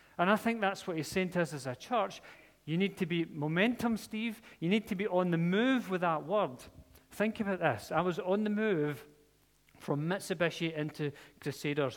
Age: 40-59